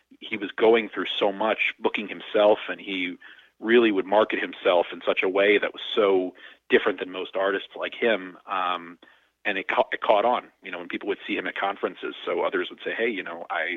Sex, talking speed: male, 220 wpm